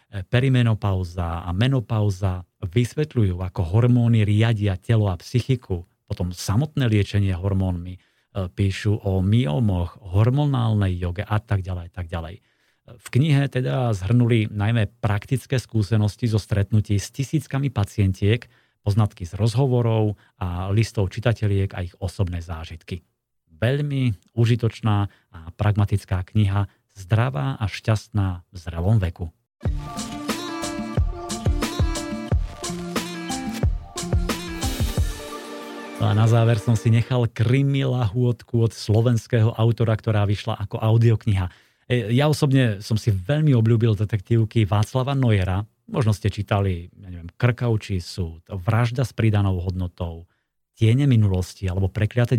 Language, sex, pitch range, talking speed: Slovak, male, 100-120 Hz, 110 wpm